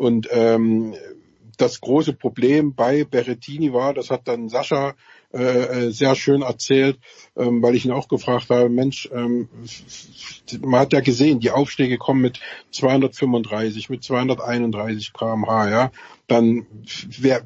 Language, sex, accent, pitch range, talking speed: German, male, German, 120-145 Hz, 135 wpm